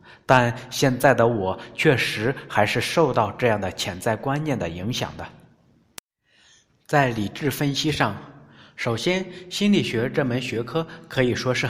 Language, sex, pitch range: Chinese, male, 120-170 Hz